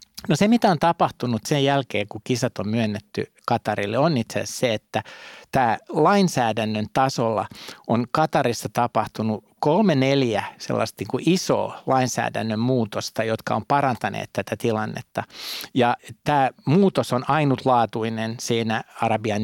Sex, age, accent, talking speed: male, 60-79, native, 135 wpm